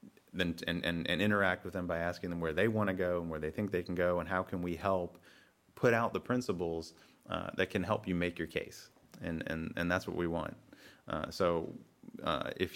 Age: 30-49